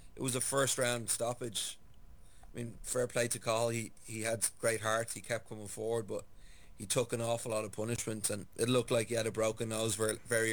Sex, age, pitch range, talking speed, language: male, 30-49, 110-120 Hz, 230 wpm, English